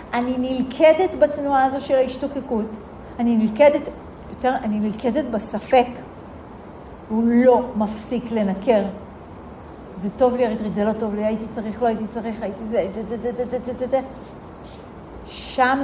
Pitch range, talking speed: 220-280 Hz, 110 wpm